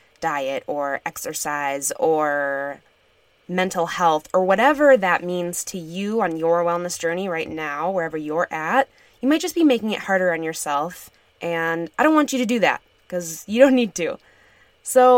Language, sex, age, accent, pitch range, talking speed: English, female, 20-39, American, 165-240 Hz, 175 wpm